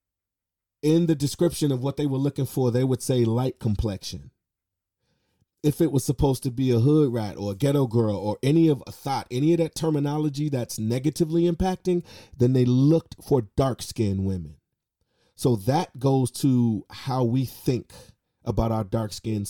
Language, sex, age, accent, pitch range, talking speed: English, male, 30-49, American, 110-135 Hz, 170 wpm